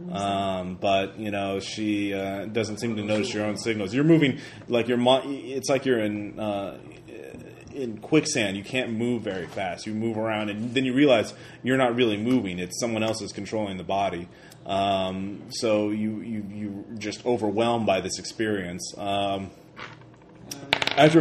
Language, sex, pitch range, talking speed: English, male, 100-125 Hz, 185 wpm